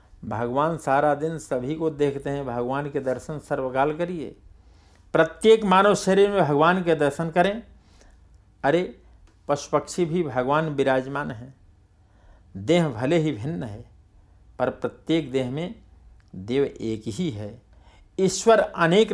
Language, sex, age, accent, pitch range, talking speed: Hindi, male, 60-79, native, 105-155 Hz, 130 wpm